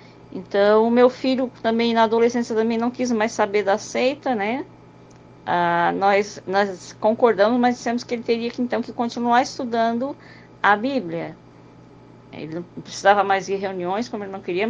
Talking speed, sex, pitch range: 165 wpm, female, 210-275 Hz